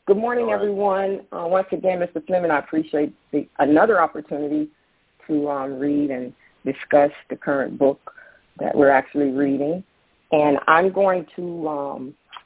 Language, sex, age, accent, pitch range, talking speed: English, female, 40-59, American, 140-180 Hz, 140 wpm